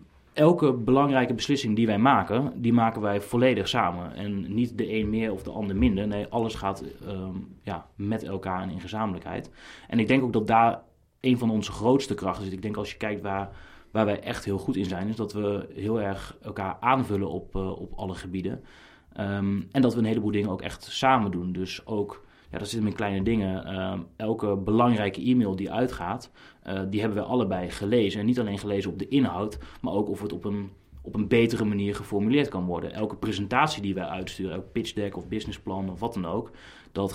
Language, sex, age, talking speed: Dutch, male, 30-49, 210 wpm